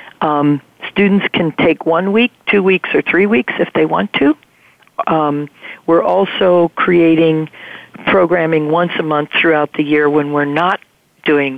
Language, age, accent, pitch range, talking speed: English, 50-69, American, 145-175 Hz, 155 wpm